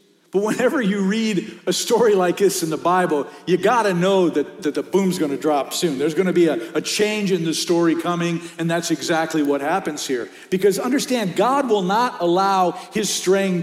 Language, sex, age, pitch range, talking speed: English, male, 50-69, 170-210 Hz, 205 wpm